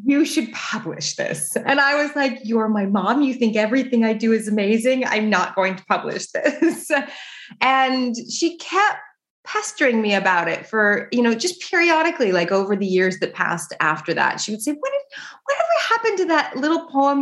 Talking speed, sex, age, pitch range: 190 wpm, female, 20-39, 175-255 Hz